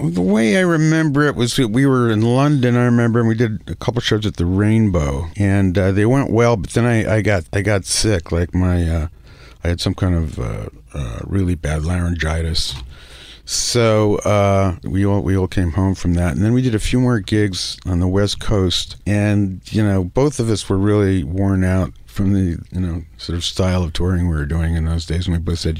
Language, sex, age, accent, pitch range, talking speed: English, male, 50-69, American, 85-105 Hz, 230 wpm